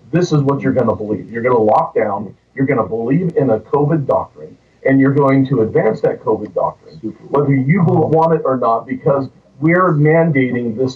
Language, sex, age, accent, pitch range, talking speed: English, male, 50-69, American, 130-160 Hz, 190 wpm